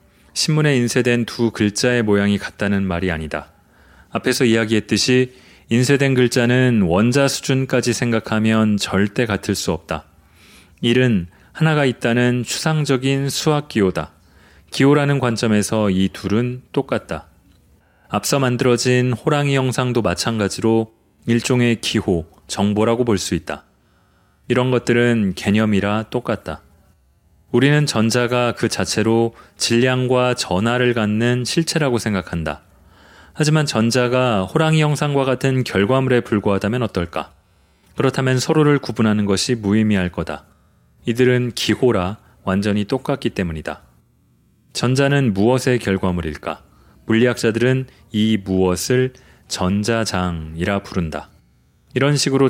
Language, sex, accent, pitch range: Korean, male, native, 95-125 Hz